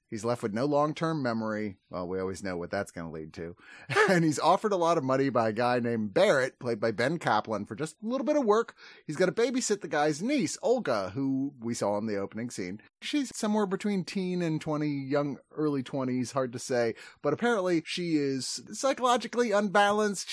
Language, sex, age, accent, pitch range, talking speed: English, male, 30-49, American, 120-170 Hz, 215 wpm